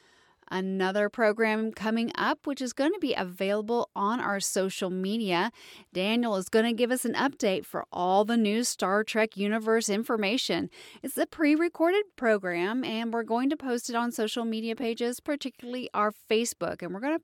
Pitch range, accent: 205-290 Hz, American